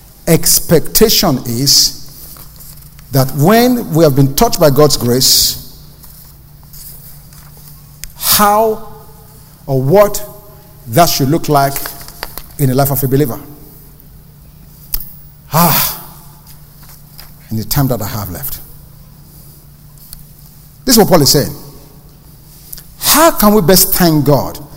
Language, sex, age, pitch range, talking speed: English, male, 50-69, 145-170 Hz, 105 wpm